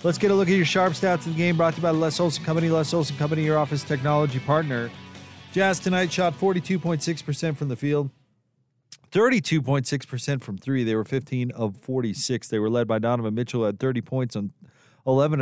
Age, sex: 30-49, male